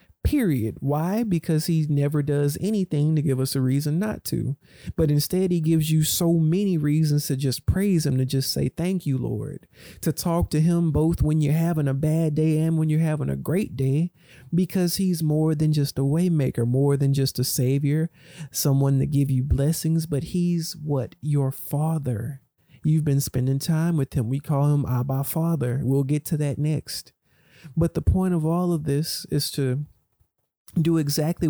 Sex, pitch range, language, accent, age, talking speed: male, 130-155 Hz, English, American, 40-59, 190 wpm